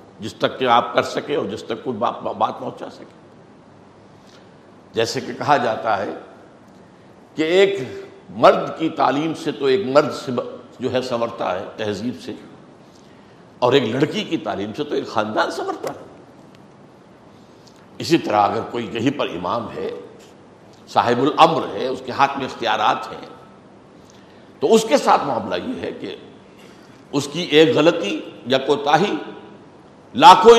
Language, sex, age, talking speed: Urdu, male, 60-79, 150 wpm